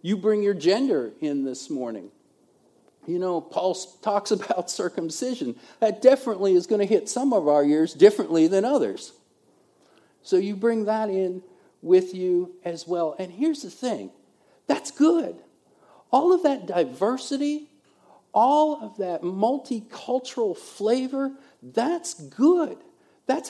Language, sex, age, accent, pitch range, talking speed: English, male, 50-69, American, 180-270 Hz, 135 wpm